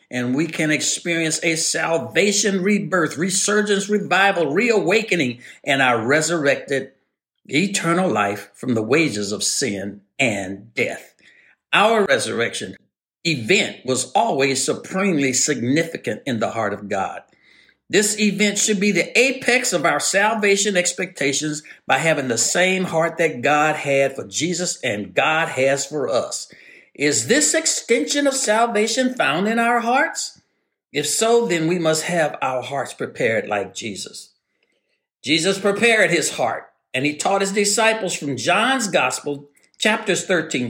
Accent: American